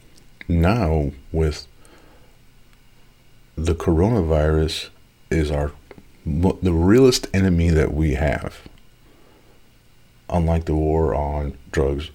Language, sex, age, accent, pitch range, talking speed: English, male, 50-69, American, 75-90 Hz, 85 wpm